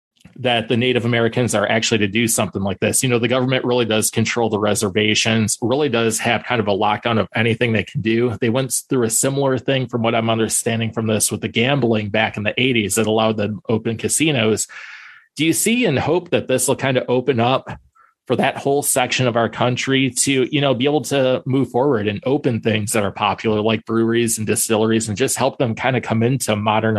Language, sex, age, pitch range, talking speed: English, male, 20-39, 110-125 Hz, 225 wpm